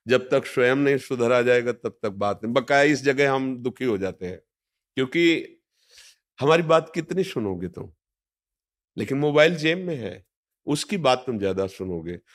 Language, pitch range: Hindi, 115-160 Hz